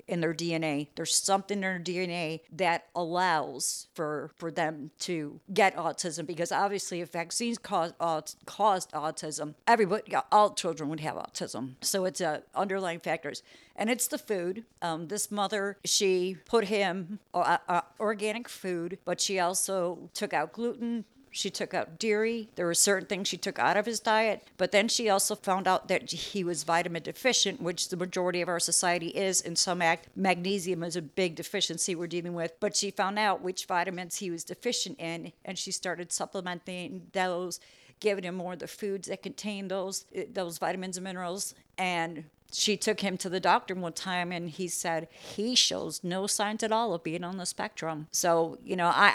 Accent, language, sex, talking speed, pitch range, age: American, English, female, 185 wpm, 170-200 Hz, 50-69